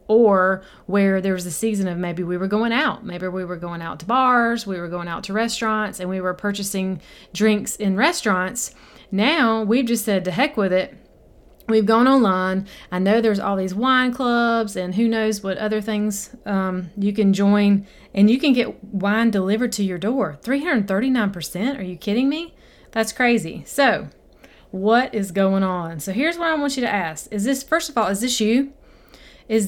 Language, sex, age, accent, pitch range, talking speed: English, female, 30-49, American, 190-240 Hz, 200 wpm